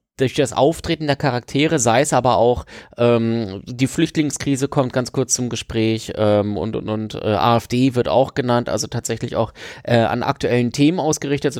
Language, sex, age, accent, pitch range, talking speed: German, male, 30-49, German, 125-150 Hz, 180 wpm